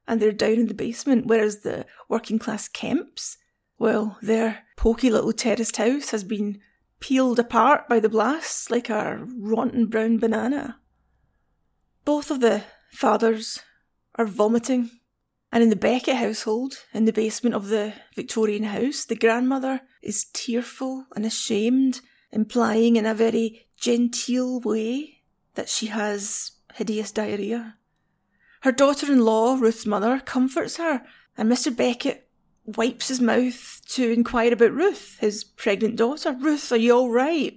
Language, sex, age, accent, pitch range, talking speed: English, female, 30-49, British, 220-255 Hz, 140 wpm